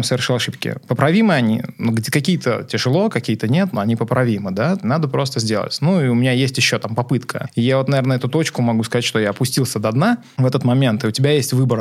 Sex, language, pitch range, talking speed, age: male, Russian, 115-140 Hz, 220 wpm, 20-39